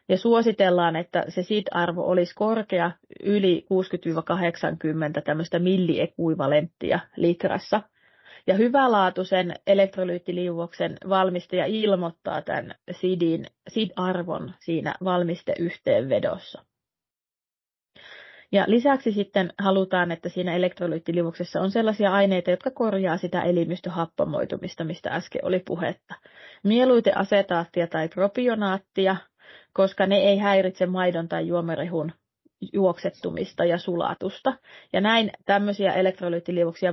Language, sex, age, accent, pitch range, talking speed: Finnish, female, 30-49, native, 175-195 Hz, 90 wpm